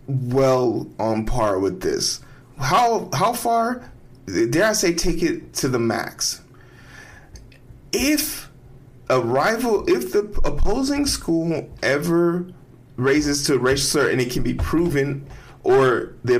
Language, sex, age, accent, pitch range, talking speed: English, male, 20-39, American, 125-165 Hz, 130 wpm